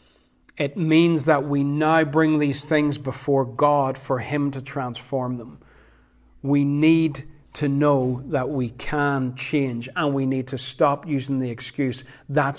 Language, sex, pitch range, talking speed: English, male, 125-150 Hz, 155 wpm